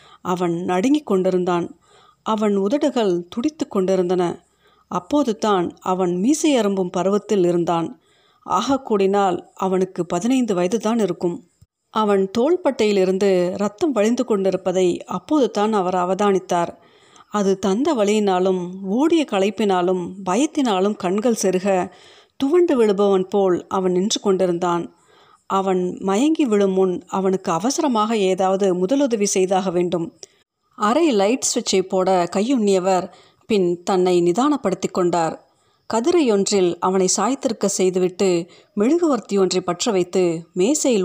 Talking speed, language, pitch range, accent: 100 wpm, Tamil, 185-235 Hz, native